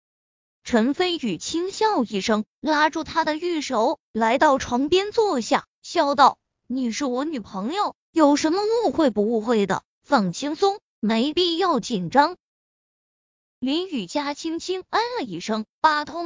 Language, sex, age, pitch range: Chinese, female, 20-39, 240-355 Hz